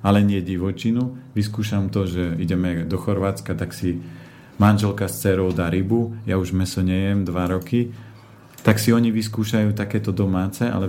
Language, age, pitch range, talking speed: Slovak, 40-59, 95-110 Hz, 160 wpm